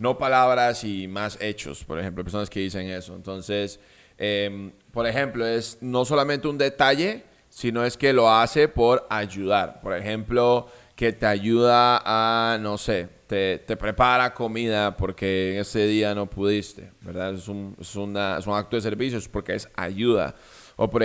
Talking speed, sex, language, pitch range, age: 170 wpm, male, Spanish, 100-125 Hz, 20-39